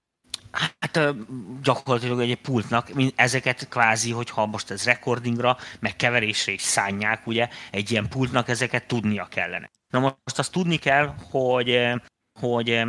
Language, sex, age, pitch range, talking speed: Hungarian, male, 30-49, 110-125 Hz, 130 wpm